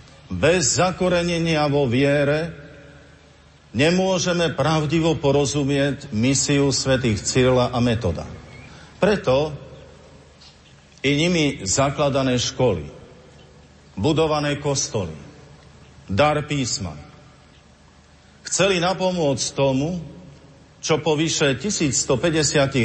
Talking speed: 75 wpm